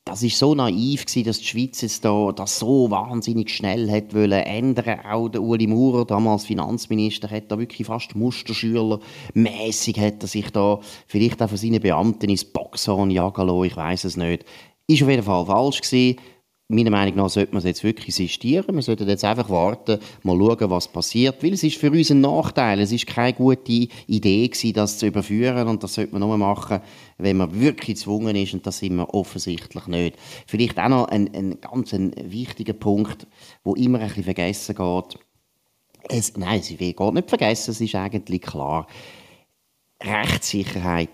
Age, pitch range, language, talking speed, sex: 30-49, 95-115 Hz, German, 180 wpm, male